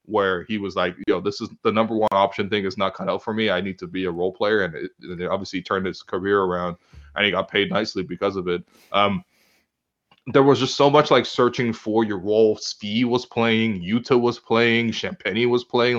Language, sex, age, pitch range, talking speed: English, male, 20-39, 95-120 Hz, 235 wpm